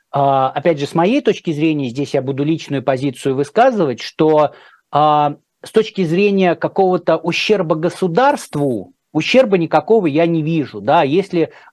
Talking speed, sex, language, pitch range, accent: 135 wpm, male, Russian, 140-175 Hz, native